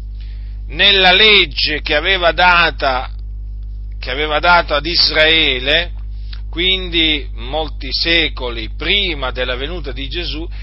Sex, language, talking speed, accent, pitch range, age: male, Italian, 100 wpm, native, 125-175 Hz, 40-59